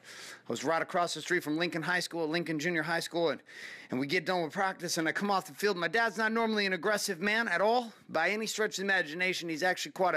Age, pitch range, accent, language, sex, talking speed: 30-49, 170-230 Hz, American, English, male, 265 wpm